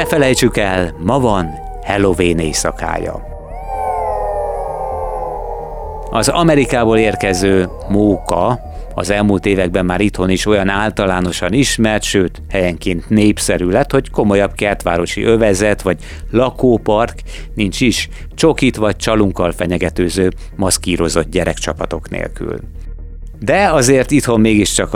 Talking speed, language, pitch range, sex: 100 wpm, Hungarian, 85-105 Hz, male